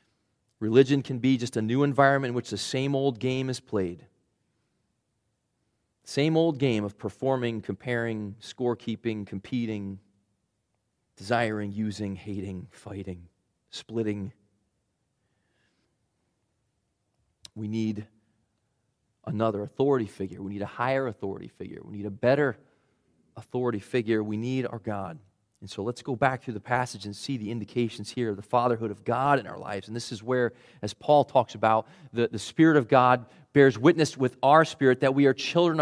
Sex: male